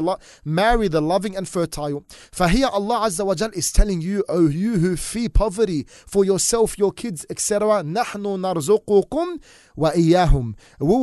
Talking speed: 150 wpm